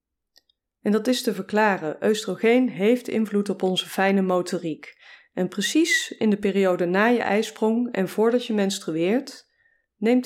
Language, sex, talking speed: Dutch, female, 145 wpm